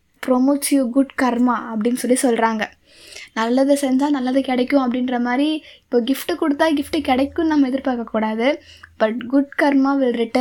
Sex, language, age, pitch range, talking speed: female, English, 10-29, 245-285 Hz, 90 wpm